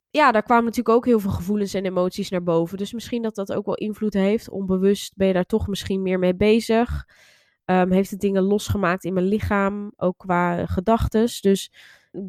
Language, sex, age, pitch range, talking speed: Dutch, female, 20-39, 175-200 Hz, 200 wpm